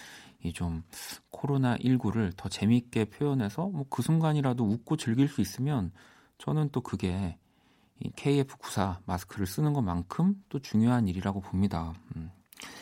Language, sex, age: Korean, male, 40-59